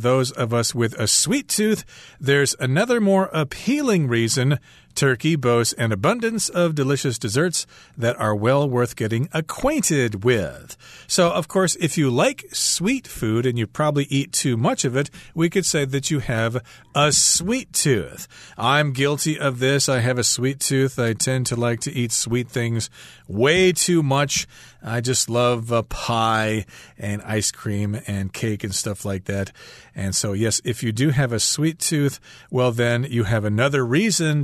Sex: male